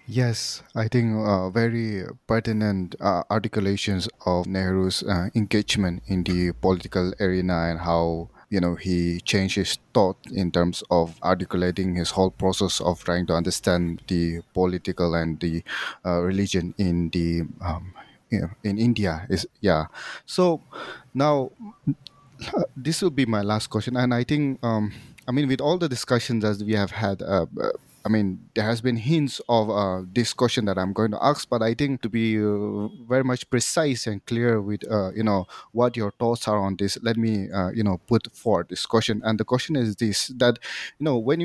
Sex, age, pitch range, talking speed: male, 30-49, 95-120 Hz, 180 wpm